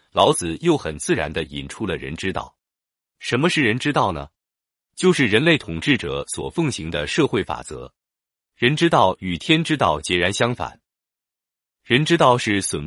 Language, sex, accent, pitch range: Chinese, male, native, 85-140 Hz